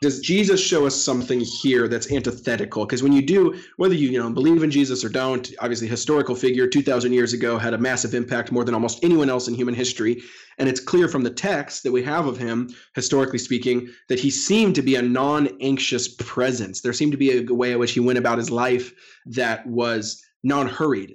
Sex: male